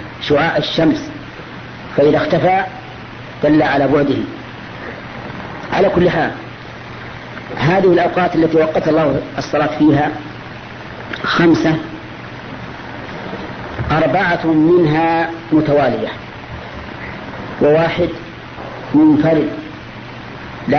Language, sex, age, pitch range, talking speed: Arabic, female, 50-69, 150-170 Hz, 65 wpm